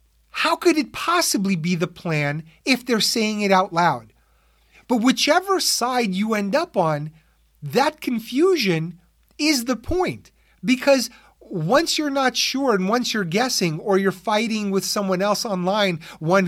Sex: male